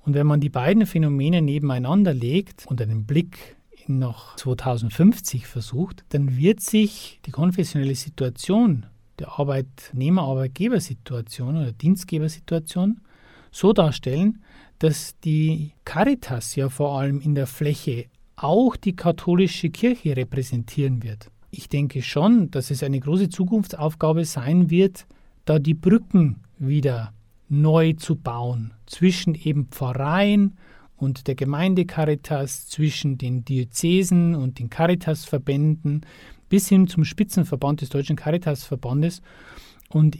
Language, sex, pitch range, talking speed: German, male, 135-175 Hz, 120 wpm